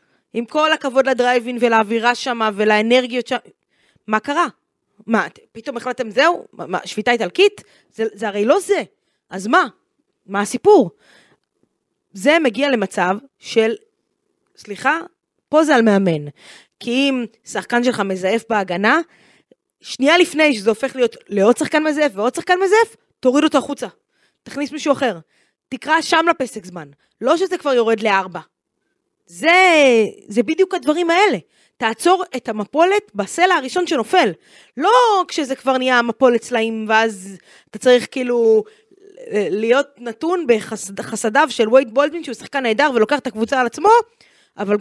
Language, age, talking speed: Hebrew, 20-39, 140 wpm